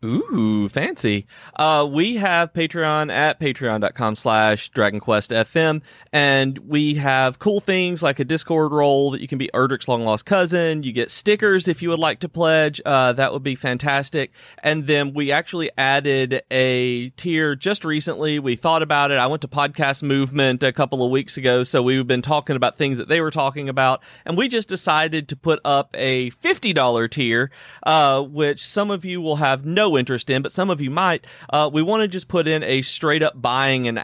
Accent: American